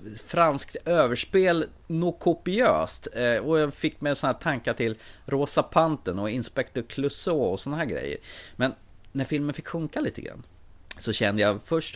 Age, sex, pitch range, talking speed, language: 30-49, male, 95-140 Hz, 160 wpm, Swedish